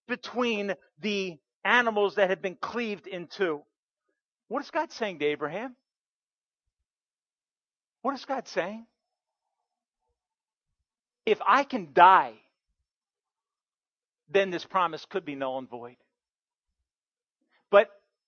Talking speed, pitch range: 105 wpm, 175-240 Hz